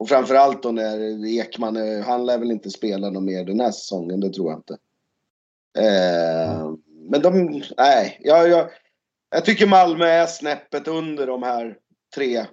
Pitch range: 115-150 Hz